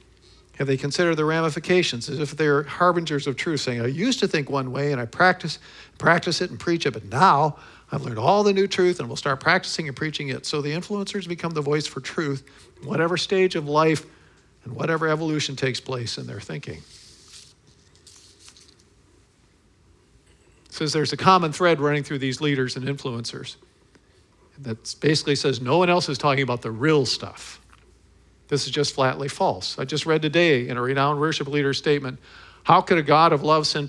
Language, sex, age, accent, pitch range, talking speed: English, male, 50-69, American, 130-170 Hz, 190 wpm